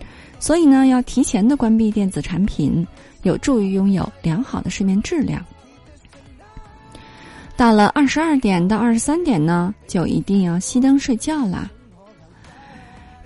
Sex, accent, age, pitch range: female, native, 20-39, 180-250 Hz